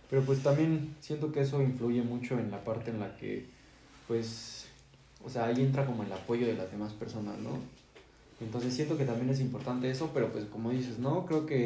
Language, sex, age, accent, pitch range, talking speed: Spanish, male, 20-39, Mexican, 115-135 Hz, 210 wpm